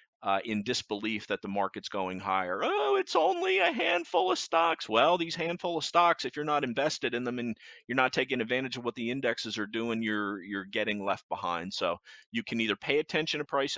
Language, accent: English, American